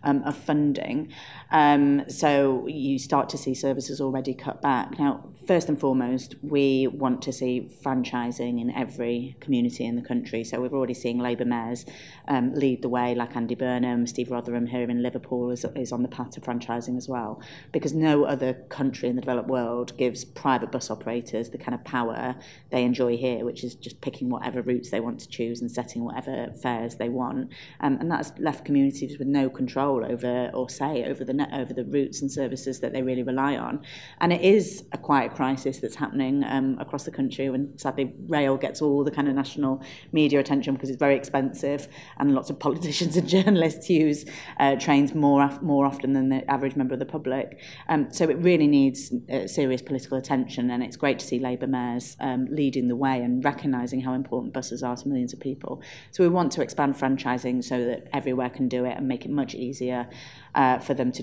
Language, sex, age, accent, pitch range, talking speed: English, female, 30-49, British, 125-140 Hz, 210 wpm